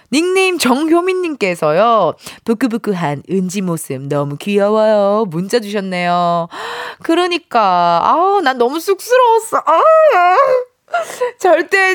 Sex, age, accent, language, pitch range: female, 20-39, native, Korean, 210-320 Hz